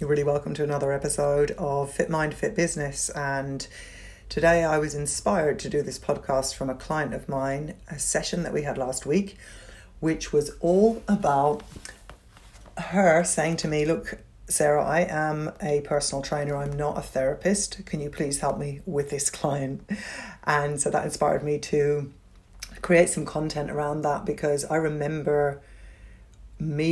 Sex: female